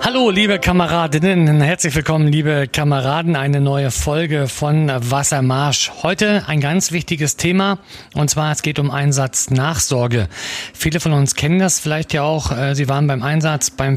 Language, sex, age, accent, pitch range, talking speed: German, male, 40-59, German, 130-160 Hz, 155 wpm